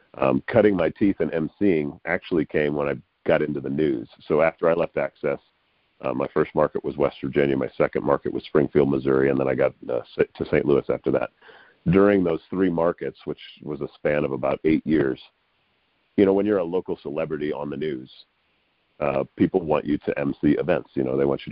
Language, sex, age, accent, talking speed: English, male, 40-59, American, 210 wpm